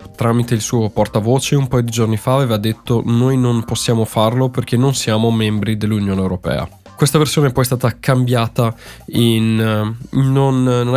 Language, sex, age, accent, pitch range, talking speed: Italian, male, 20-39, native, 105-125 Hz, 165 wpm